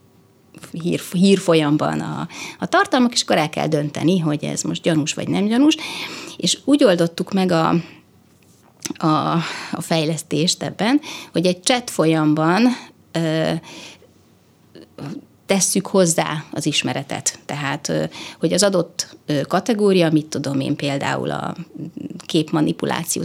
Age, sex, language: 30-49, female, Hungarian